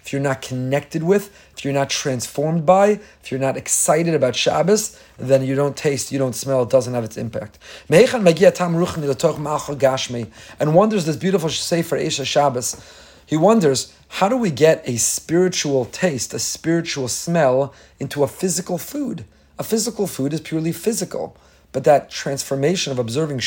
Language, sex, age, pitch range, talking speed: English, male, 40-59, 130-180 Hz, 160 wpm